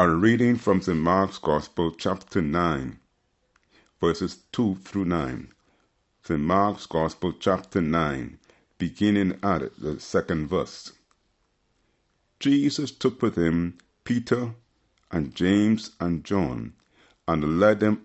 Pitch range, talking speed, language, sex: 90-110 Hz, 115 wpm, English, male